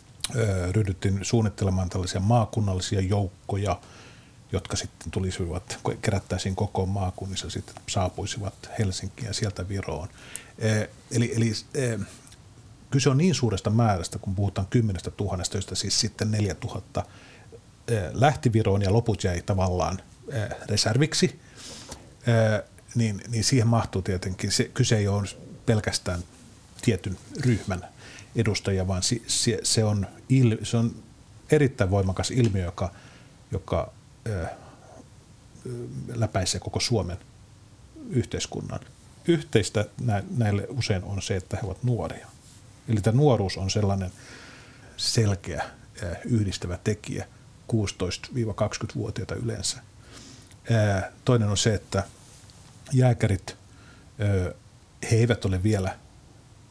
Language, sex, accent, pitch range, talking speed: Finnish, male, native, 95-120 Hz, 100 wpm